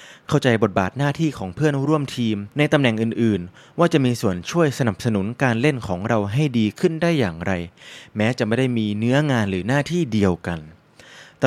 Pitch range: 100-135 Hz